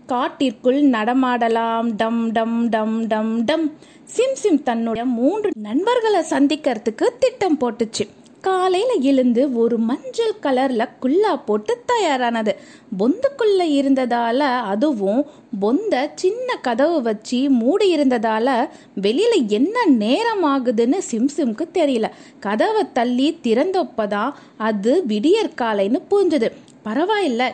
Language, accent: Tamil, native